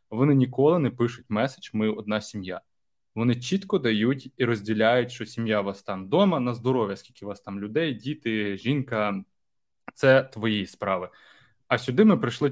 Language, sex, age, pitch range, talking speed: Ukrainian, male, 20-39, 105-135 Hz, 160 wpm